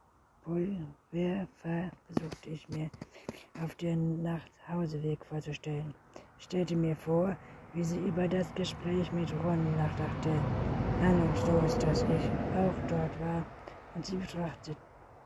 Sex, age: female, 60-79